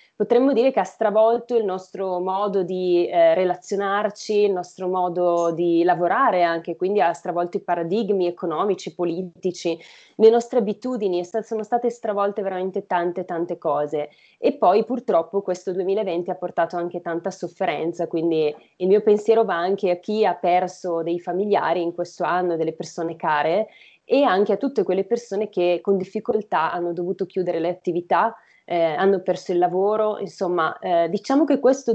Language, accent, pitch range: Italian, native, 175-225 Hz